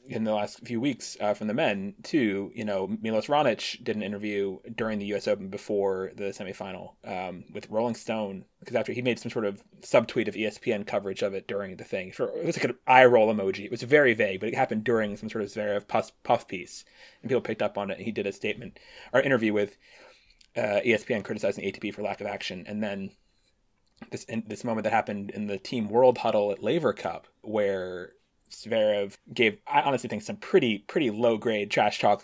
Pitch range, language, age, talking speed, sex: 100-120 Hz, English, 20-39, 210 wpm, male